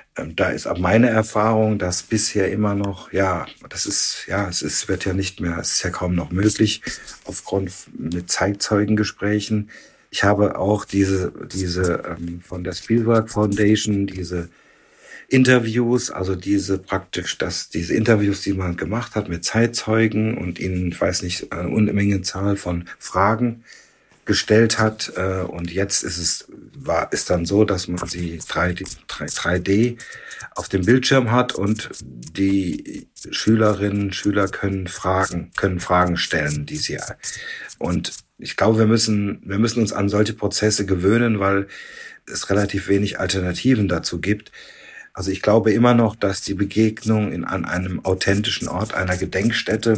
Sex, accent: male, German